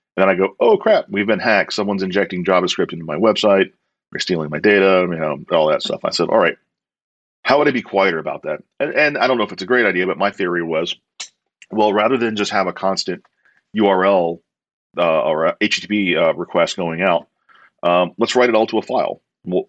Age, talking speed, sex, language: 40-59, 225 wpm, male, English